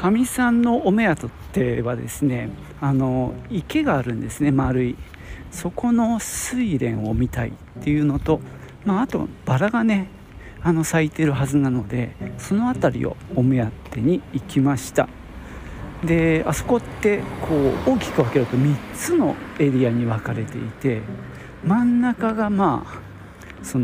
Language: Japanese